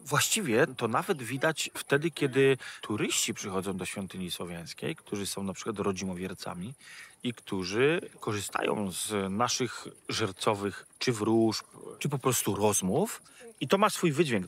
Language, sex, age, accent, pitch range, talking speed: Polish, male, 30-49, native, 100-135 Hz, 135 wpm